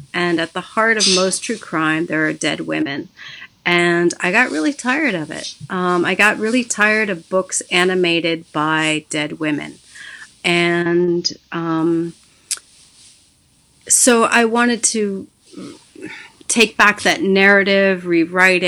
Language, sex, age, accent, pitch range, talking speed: English, female, 40-59, American, 160-195 Hz, 130 wpm